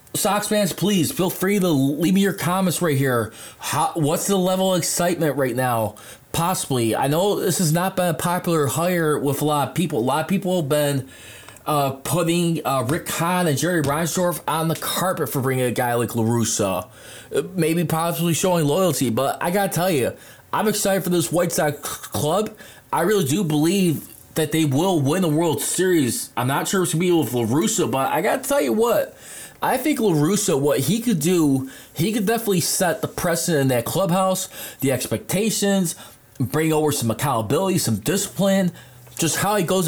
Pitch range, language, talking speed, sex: 140-185 Hz, English, 195 wpm, male